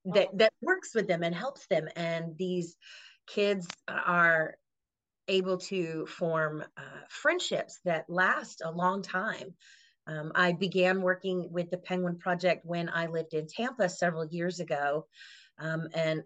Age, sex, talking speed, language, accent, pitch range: 30-49, female, 150 wpm, English, American, 155-185 Hz